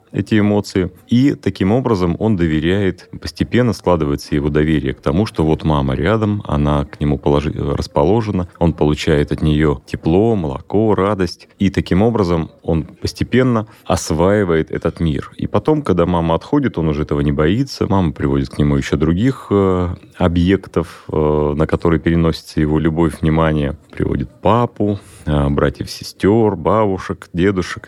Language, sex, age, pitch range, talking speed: Russian, male, 30-49, 75-100 Hz, 145 wpm